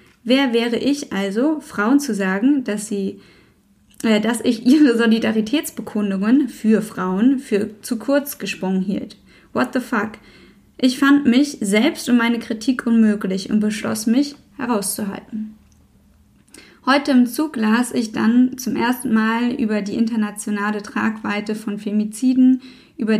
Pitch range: 210-255 Hz